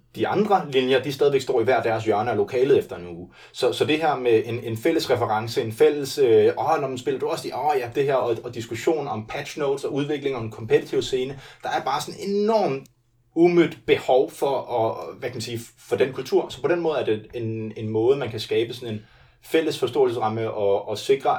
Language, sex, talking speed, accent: Danish, male, 240 wpm, native